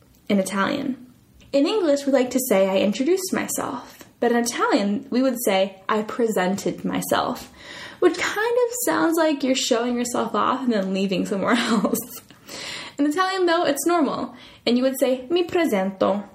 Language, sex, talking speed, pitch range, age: Italian, female, 165 wpm, 205-285 Hz, 10-29